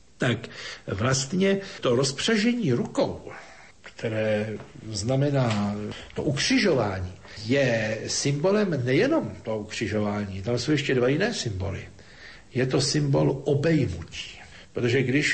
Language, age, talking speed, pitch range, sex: Slovak, 60-79, 100 wpm, 105-155 Hz, male